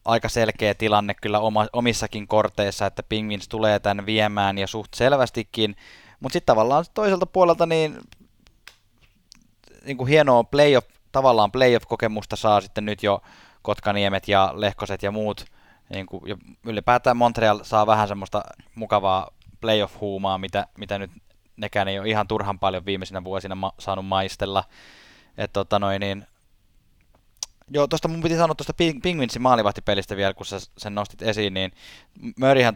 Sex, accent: male, native